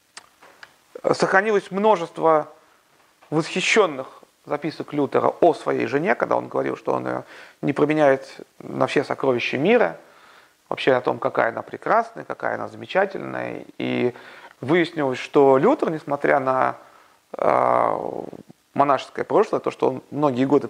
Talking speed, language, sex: 120 wpm, Russian, male